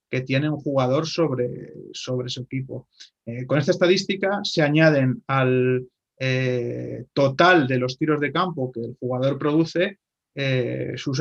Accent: Spanish